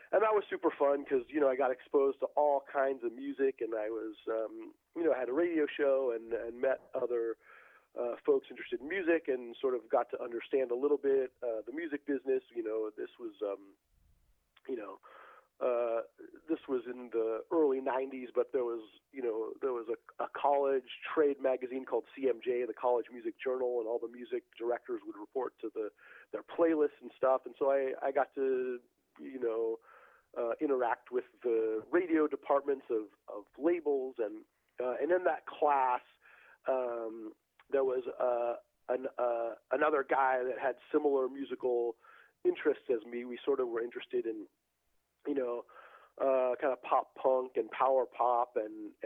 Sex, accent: male, American